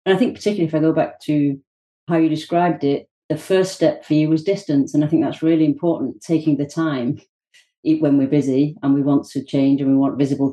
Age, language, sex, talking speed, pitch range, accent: 40-59, English, female, 235 wpm, 135-155 Hz, British